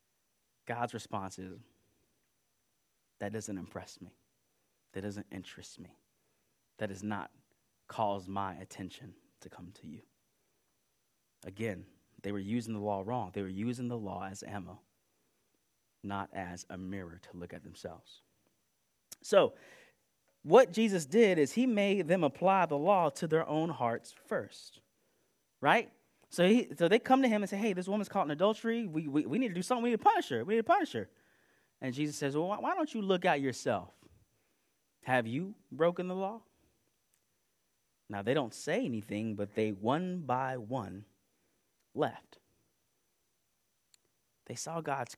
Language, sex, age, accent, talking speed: English, male, 30-49, American, 160 wpm